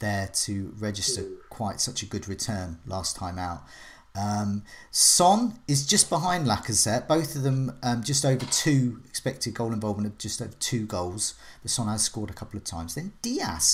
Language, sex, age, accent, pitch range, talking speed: English, male, 40-59, British, 105-140 Hz, 185 wpm